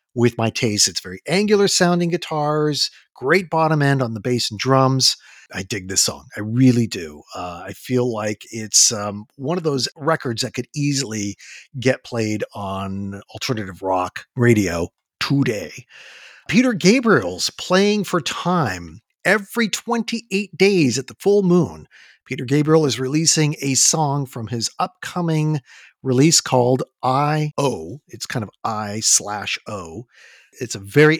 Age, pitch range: 50-69, 120-165 Hz